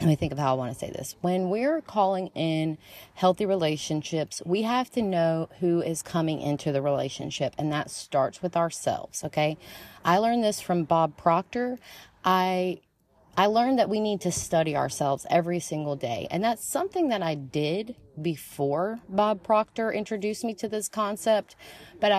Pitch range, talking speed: 150-195 Hz, 175 wpm